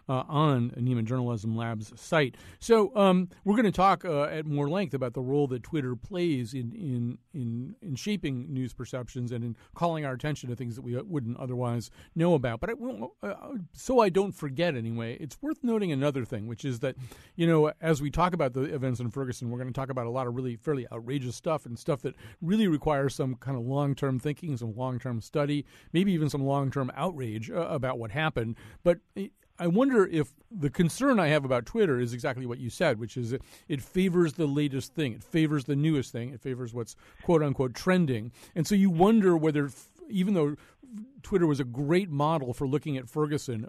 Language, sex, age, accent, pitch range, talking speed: English, male, 40-59, American, 125-165 Hz, 210 wpm